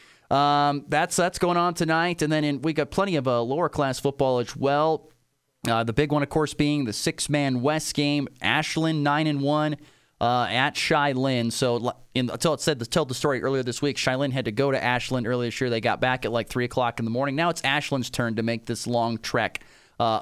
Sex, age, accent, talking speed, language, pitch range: male, 30-49, American, 235 wpm, English, 110-140 Hz